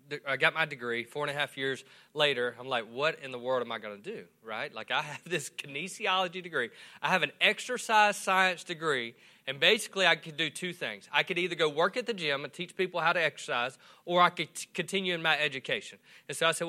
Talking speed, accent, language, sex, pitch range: 235 wpm, American, English, male, 140-175 Hz